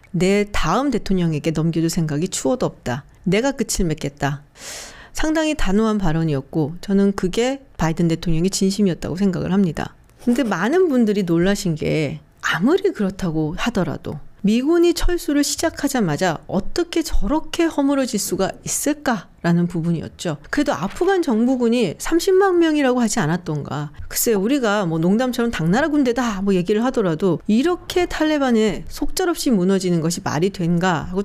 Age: 40-59